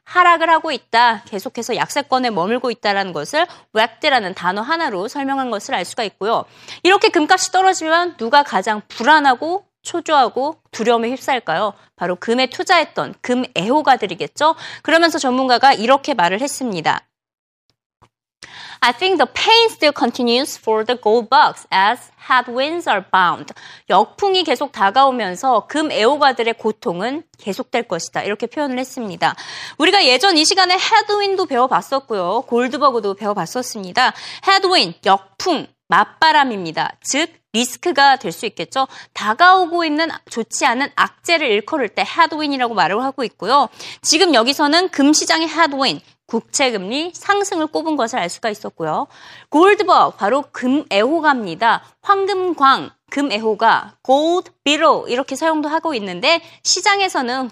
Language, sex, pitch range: Korean, female, 235-335 Hz